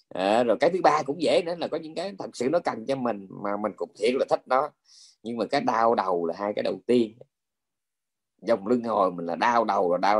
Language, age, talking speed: Vietnamese, 20-39, 260 wpm